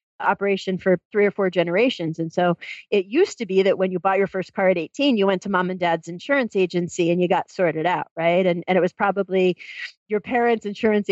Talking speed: 230 wpm